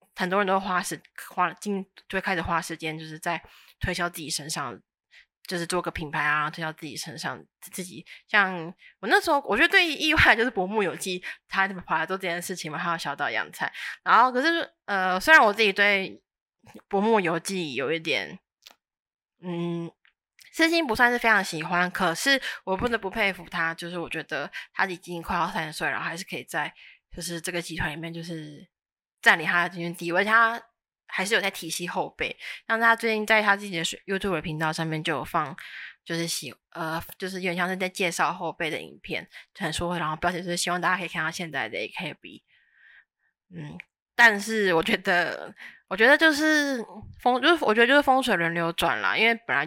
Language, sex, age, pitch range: Chinese, female, 20-39, 165-215 Hz